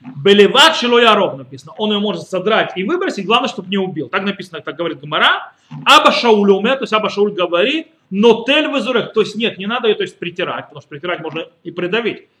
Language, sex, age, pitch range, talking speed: Russian, male, 30-49, 175-245 Hz, 195 wpm